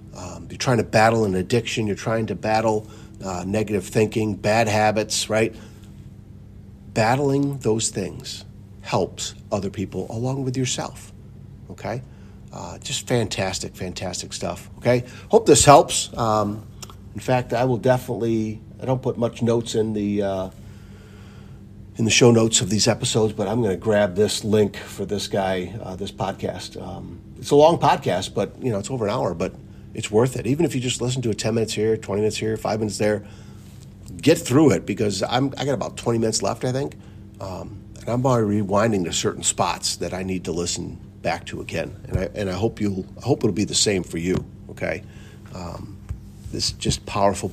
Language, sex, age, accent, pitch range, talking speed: English, male, 50-69, American, 100-115 Hz, 190 wpm